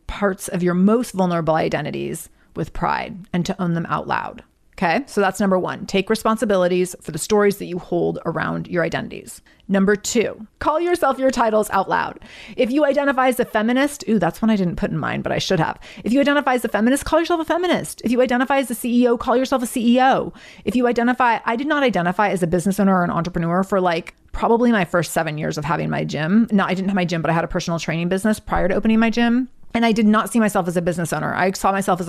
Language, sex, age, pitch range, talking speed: English, female, 30-49, 175-230 Hz, 250 wpm